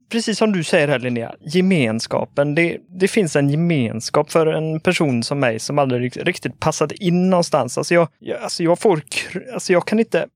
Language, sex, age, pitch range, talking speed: Swedish, male, 30-49, 140-180 Hz, 190 wpm